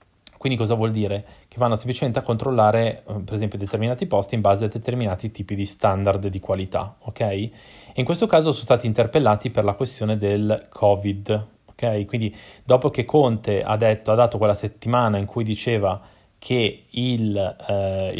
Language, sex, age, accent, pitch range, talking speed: Italian, male, 20-39, native, 105-125 Hz, 170 wpm